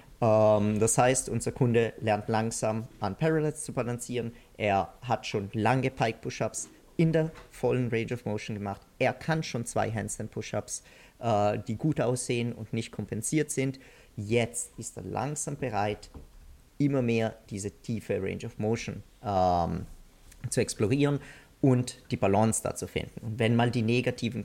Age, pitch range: 40-59, 105-125 Hz